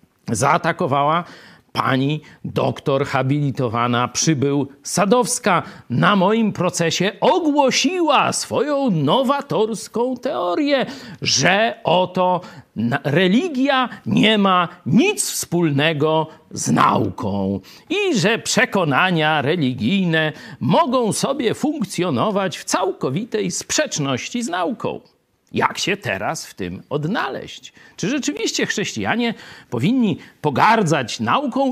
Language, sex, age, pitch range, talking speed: Polish, male, 50-69, 155-255 Hz, 85 wpm